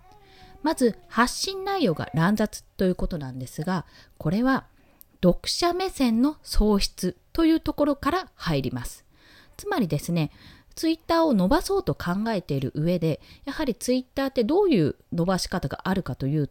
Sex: female